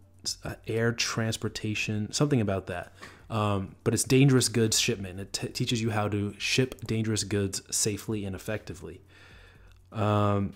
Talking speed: 135 wpm